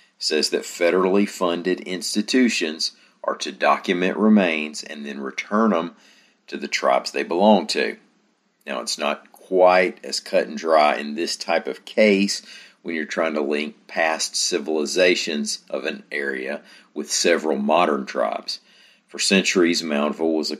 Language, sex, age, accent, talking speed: English, male, 50-69, American, 150 wpm